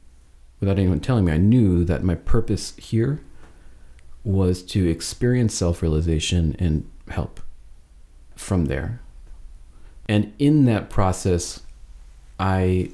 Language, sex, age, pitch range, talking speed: English, male, 40-59, 75-95 Hz, 105 wpm